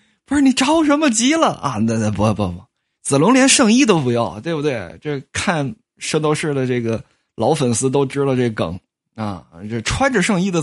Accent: native